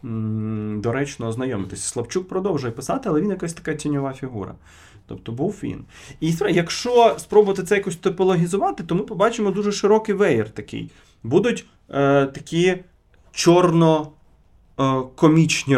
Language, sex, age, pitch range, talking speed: Ukrainian, male, 30-49, 100-145 Hz, 120 wpm